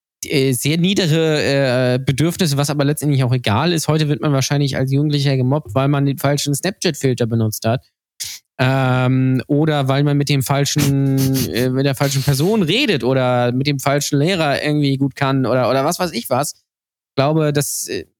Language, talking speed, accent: German, 180 wpm, German